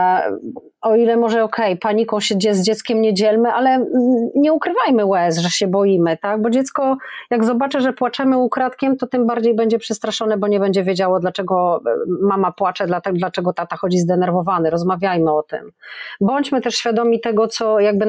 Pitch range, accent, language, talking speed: 185-230 Hz, native, Polish, 165 wpm